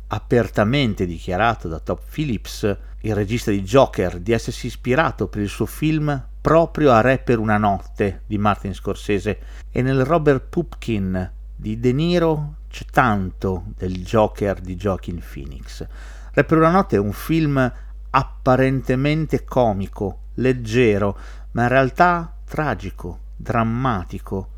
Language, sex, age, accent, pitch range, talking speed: Italian, male, 50-69, native, 95-130 Hz, 130 wpm